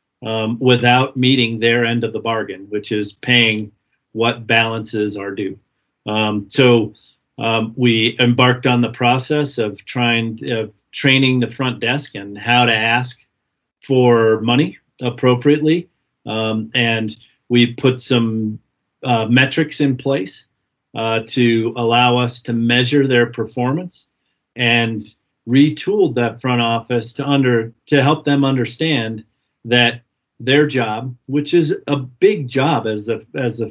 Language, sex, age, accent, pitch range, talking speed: English, male, 40-59, American, 115-130 Hz, 135 wpm